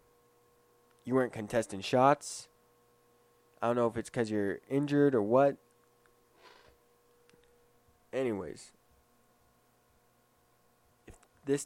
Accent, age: American, 20-39